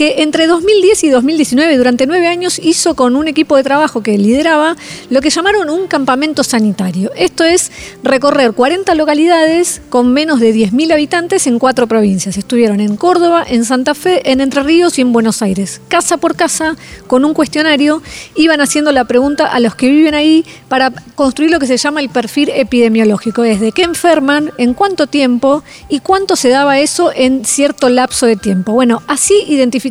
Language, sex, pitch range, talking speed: Spanish, female, 245-320 Hz, 185 wpm